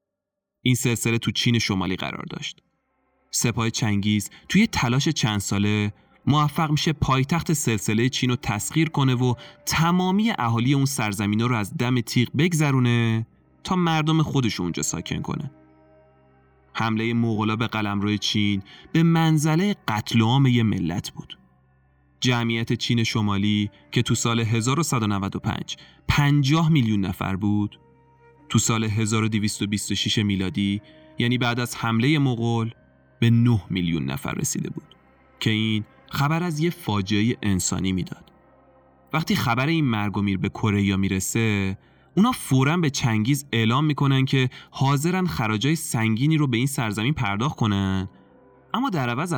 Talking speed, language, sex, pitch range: 135 wpm, Persian, male, 105-140 Hz